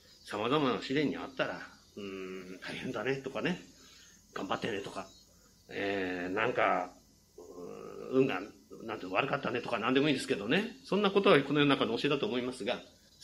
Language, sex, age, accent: Japanese, male, 40-59, native